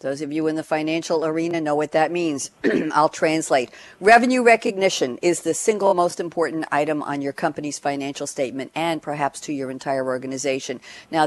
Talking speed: 175 wpm